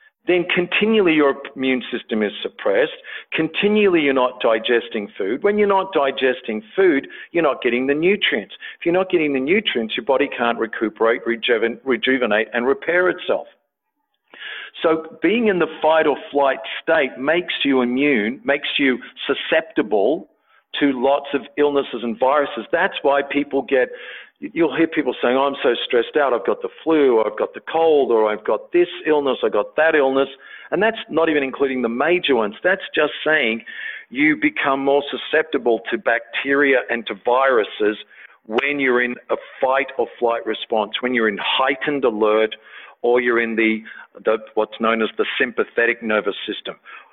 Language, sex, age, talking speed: English, male, 50-69, 165 wpm